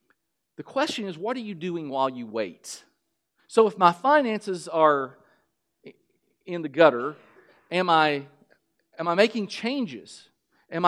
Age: 40-59